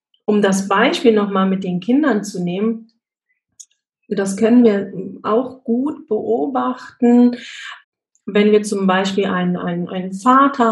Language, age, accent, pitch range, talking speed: German, 30-49, German, 185-230 Hz, 125 wpm